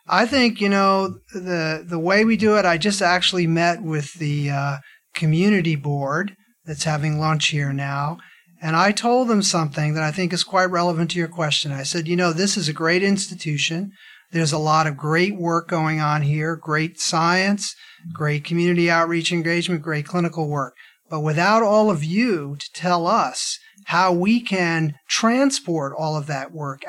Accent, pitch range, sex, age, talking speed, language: American, 155-185 Hz, male, 40-59, 180 wpm, English